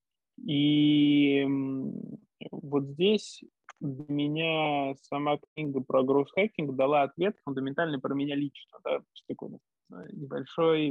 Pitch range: 135-155 Hz